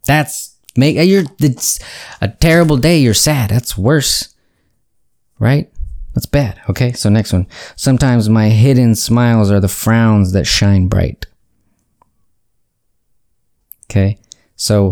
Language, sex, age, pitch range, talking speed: English, male, 20-39, 95-120 Hz, 120 wpm